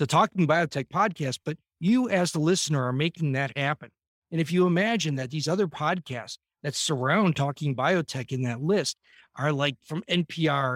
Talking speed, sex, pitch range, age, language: 180 wpm, male, 135-180 Hz, 50-69, English